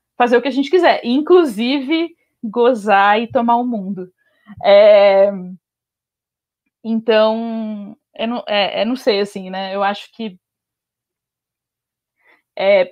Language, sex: Portuguese, female